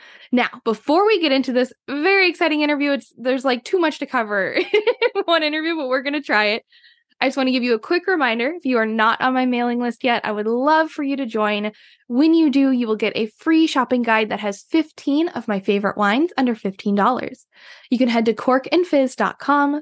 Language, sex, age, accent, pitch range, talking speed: English, female, 10-29, American, 230-320 Hz, 220 wpm